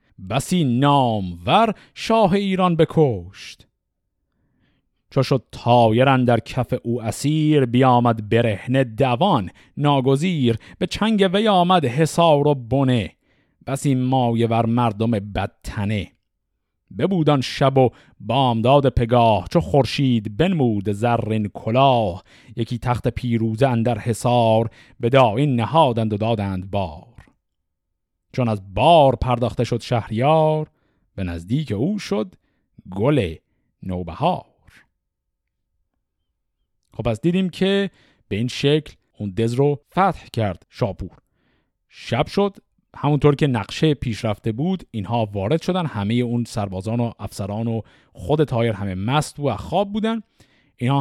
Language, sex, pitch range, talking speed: Persian, male, 110-145 Hz, 115 wpm